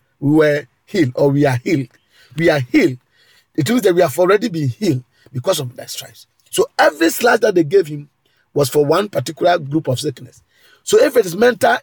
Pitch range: 130-195 Hz